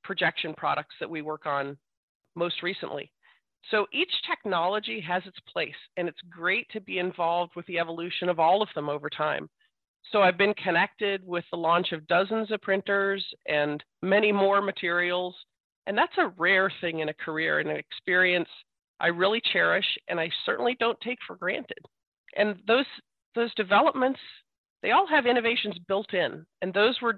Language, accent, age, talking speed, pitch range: English, American, 40-59, 170 wpm, 170-215 Hz